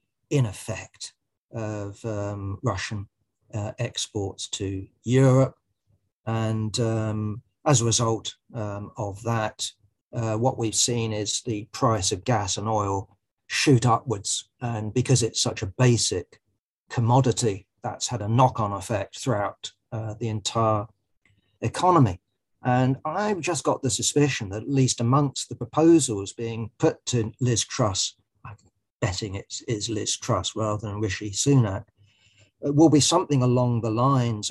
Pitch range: 105-130 Hz